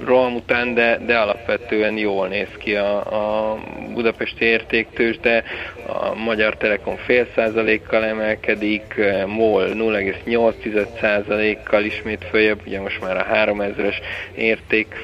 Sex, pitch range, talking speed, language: male, 105-115 Hz, 120 wpm, Hungarian